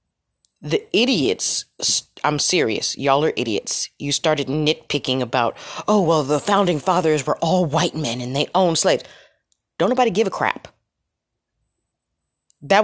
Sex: female